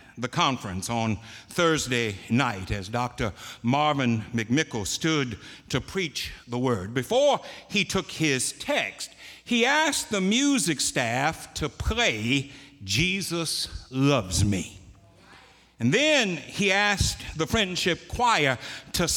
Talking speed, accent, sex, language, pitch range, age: 115 wpm, American, male, English, 115-190 Hz, 60-79